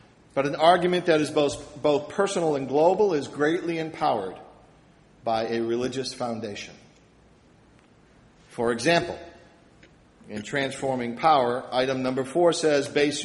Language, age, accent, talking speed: English, 50-69, American, 120 wpm